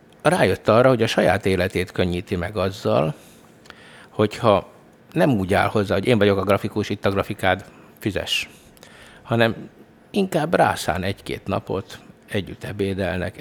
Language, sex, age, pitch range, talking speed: Hungarian, male, 60-79, 95-115 Hz, 135 wpm